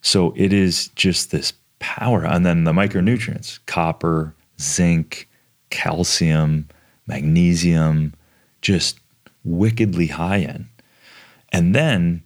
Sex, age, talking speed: male, 30-49, 100 wpm